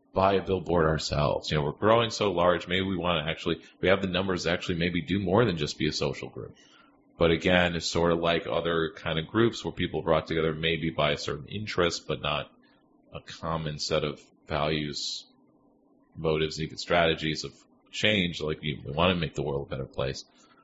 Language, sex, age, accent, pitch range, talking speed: English, male, 30-49, American, 80-95 Hz, 205 wpm